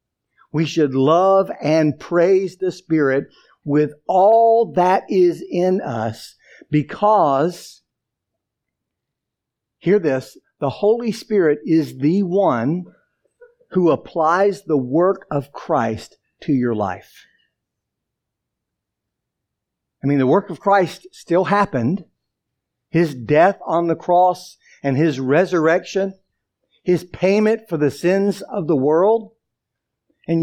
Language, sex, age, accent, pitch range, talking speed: English, male, 50-69, American, 145-195 Hz, 110 wpm